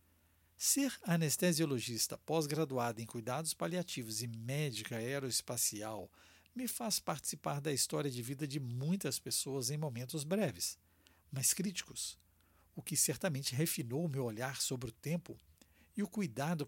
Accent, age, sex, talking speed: Brazilian, 60-79, male, 130 wpm